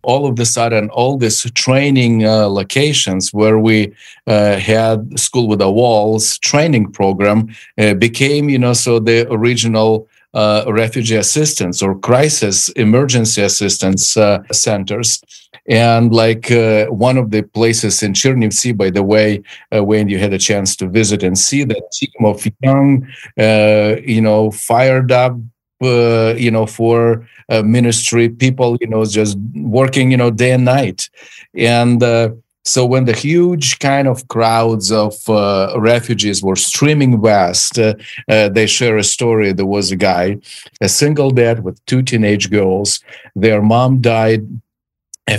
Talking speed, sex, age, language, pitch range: 155 wpm, male, 50-69, English, 105-120 Hz